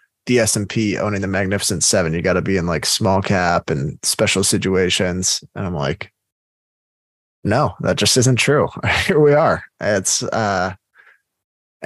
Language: English